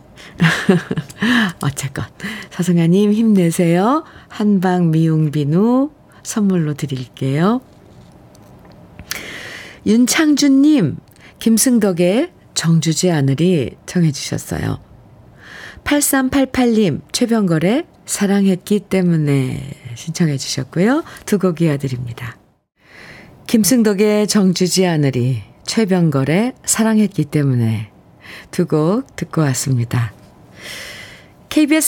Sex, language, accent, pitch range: female, Korean, native, 150-230 Hz